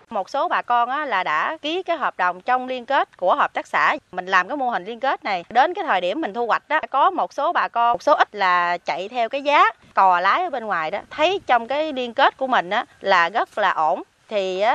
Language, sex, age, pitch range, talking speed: Vietnamese, female, 20-39, 170-260 Hz, 270 wpm